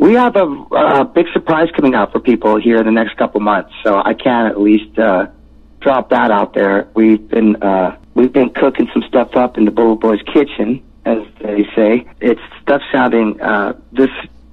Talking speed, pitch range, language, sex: 200 wpm, 100-120 Hz, English, male